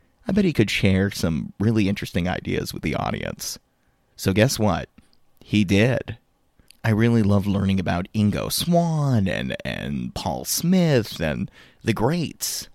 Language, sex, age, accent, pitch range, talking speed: English, male, 30-49, American, 95-140 Hz, 145 wpm